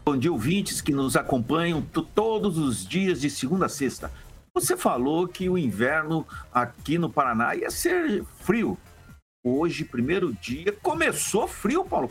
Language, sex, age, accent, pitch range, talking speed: Portuguese, male, 60-79, Brazilian, 130-210 Hz, 155 wpm